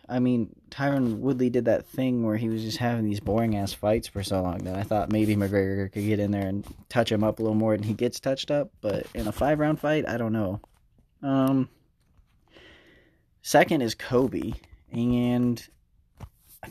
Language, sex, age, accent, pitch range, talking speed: English, male, 20-39, American, 105-130 Hz, 190 wpm